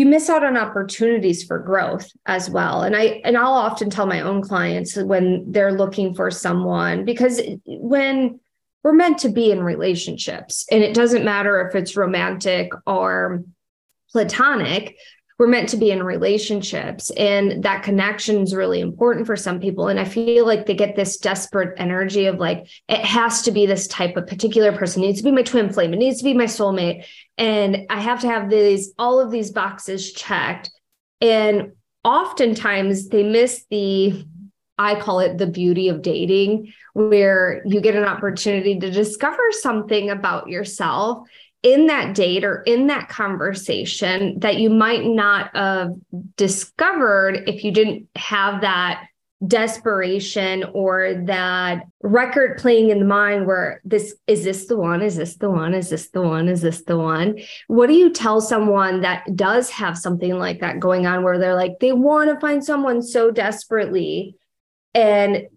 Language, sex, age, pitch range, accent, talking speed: English, female, 20-39, 190-225 Hz, American, 175 wpm